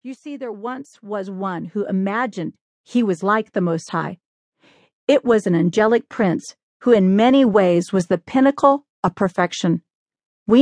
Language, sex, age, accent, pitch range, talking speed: English, female, 40-59, American, 175-230 Hz, 165 wpm